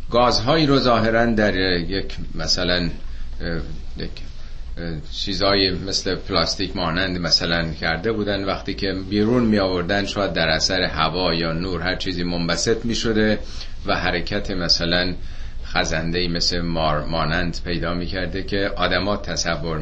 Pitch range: 80-110 Hz